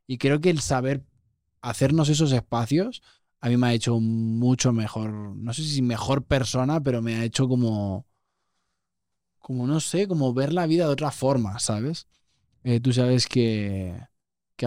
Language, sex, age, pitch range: Spanish, male, 20-39, 115-135 Hz